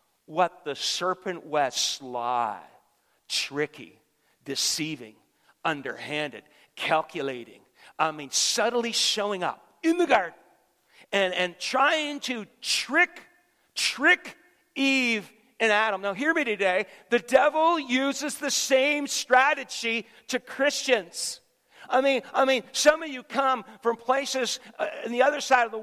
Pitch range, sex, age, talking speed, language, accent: 180-250 Hz, male, 50-69, 130 wpm, English, American